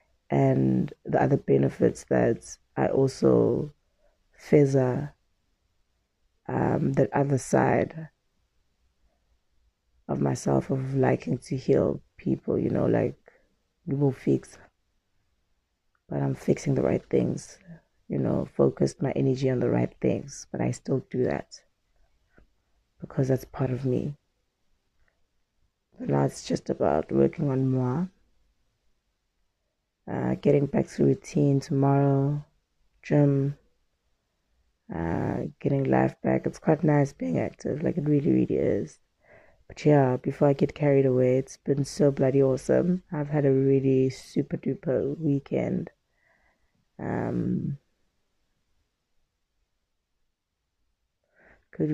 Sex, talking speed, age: female, 115 wpm, 20-39